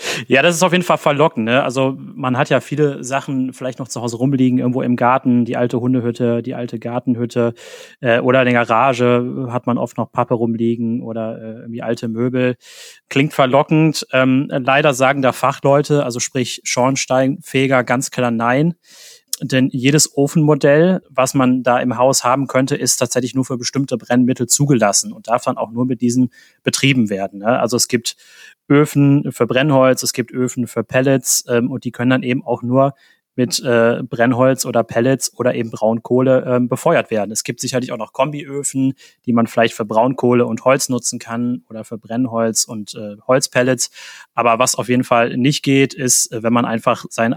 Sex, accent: male, German